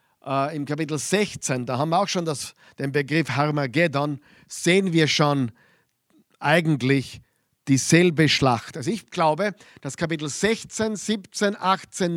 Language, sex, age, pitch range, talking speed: German, male, 50-69, 130-185 Hz, 130 wpm